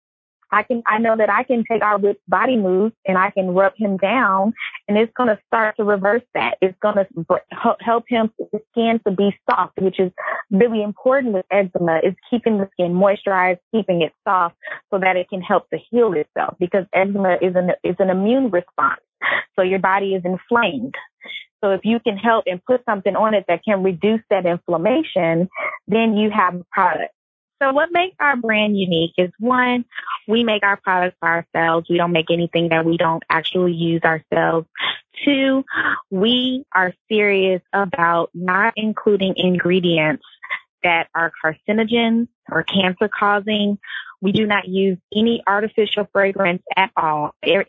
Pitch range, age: 180-225 Hz, 20-39